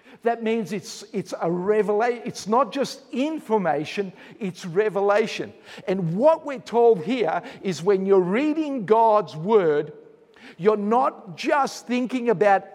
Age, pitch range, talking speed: 50-69, 195-250 Hz, 130 wpm